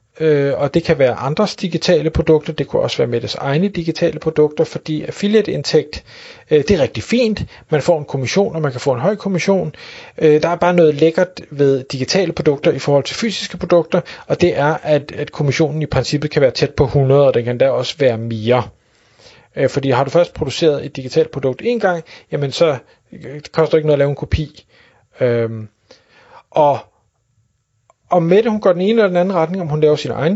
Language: Danish